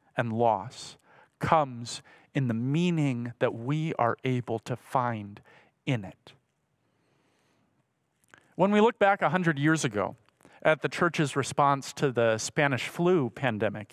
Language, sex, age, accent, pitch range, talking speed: English, male, 40-59, American, 130-175 Hz, 135 wpm